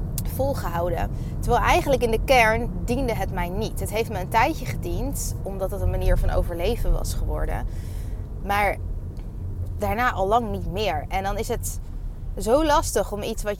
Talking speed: 170 wpm